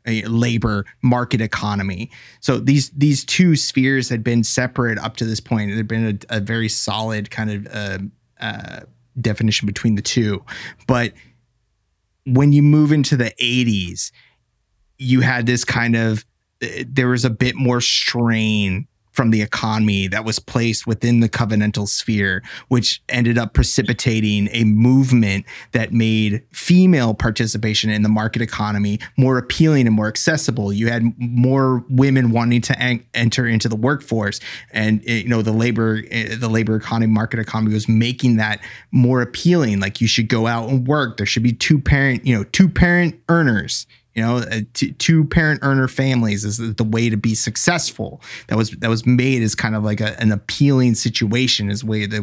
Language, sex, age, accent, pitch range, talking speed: English, male, 30-49, American, 110-130 Hz, 170 wpm